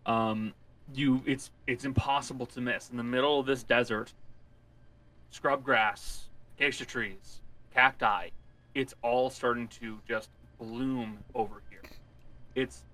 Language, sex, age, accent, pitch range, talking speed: English, male, 30-49, American, 105-140 Hz, 125 wpm